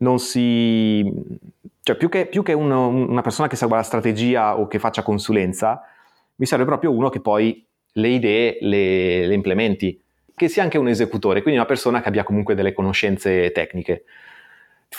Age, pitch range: 30-49, 100-120 Hz